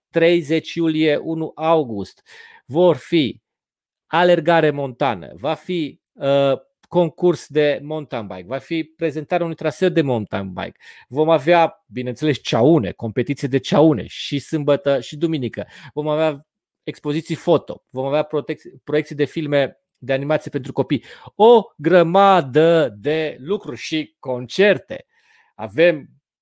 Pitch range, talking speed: 140-170 Hz, 120 wpm